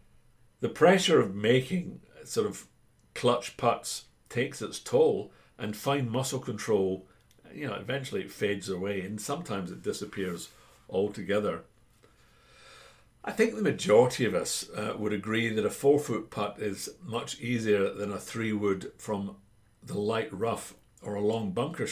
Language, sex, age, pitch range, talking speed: English, male, 60-79, 100-130 Hz, 150 wpm